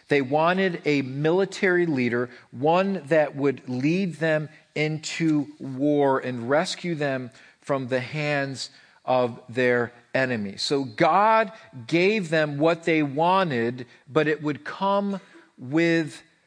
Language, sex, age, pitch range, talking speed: English, male, 40-59, 140-185 Hz, 120 wpm